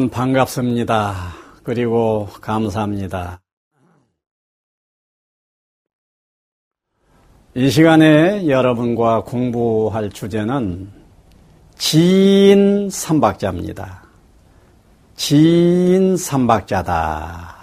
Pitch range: 105-170 Hz